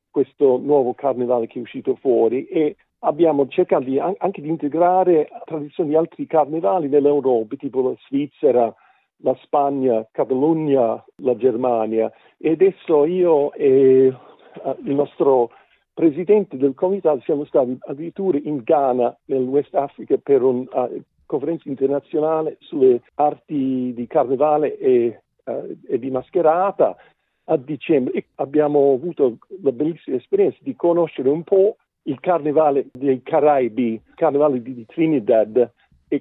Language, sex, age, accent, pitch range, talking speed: Italian, male, 50-69, native, 130-165 Hz, 135 wpm